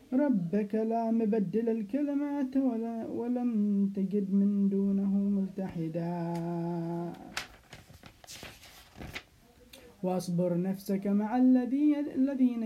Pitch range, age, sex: 200-235 Hz, 20-39, male